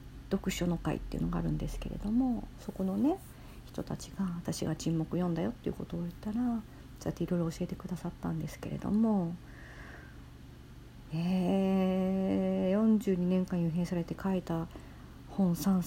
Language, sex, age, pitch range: Japanese, female, 50-69, 170-215 Hz